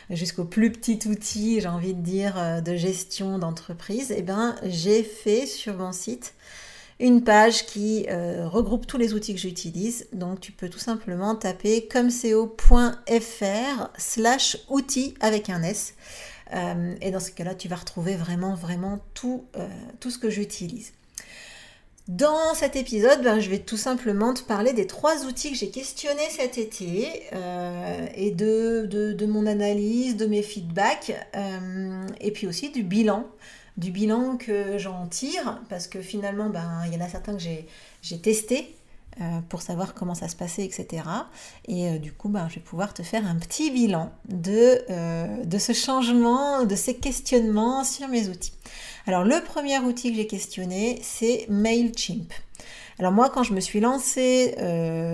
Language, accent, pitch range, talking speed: French, French, 180-235 Hz, 170 wpm